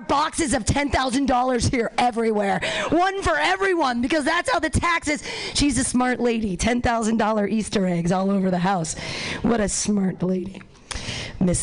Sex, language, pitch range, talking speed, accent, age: female, English, 225-335 Hz, 150 wpm, American, 40-59